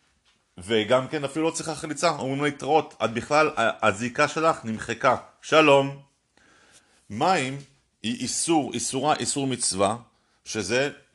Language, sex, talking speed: Hebrew, male, 115 wpm